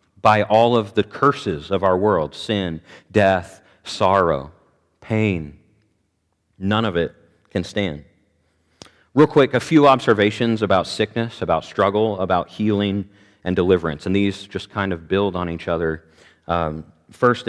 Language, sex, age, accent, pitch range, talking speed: English, male, 40-59, American, 90-115 Hz, 140 wpm